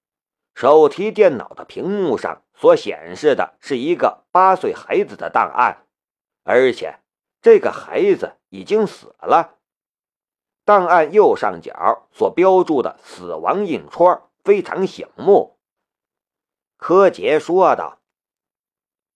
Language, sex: Chinese, male